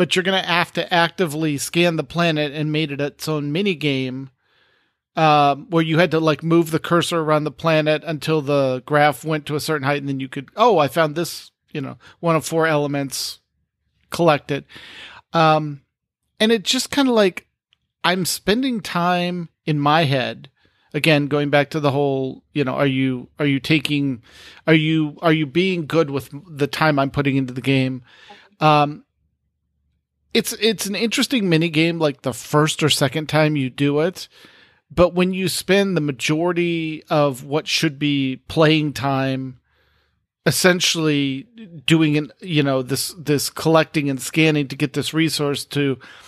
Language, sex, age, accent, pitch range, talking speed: English, male, 50-69, American, 140-170 Hz, 175 wpm